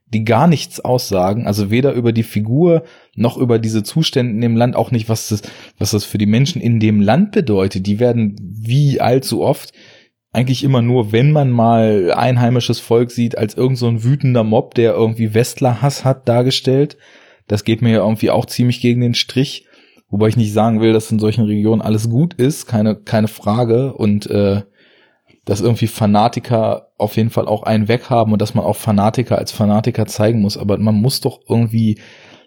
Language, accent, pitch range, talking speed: German, German, 110-125 Hz, 190 wpm